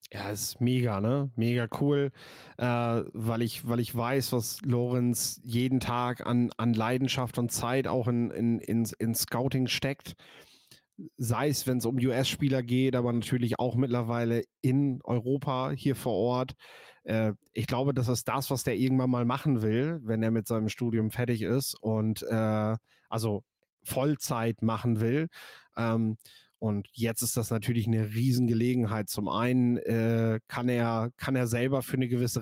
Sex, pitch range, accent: male, 115-130 Hz, German